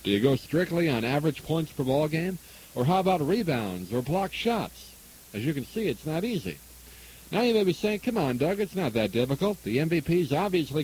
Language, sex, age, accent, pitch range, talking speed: English, male, 60-79, American, 125-180 Hz, 215 wpm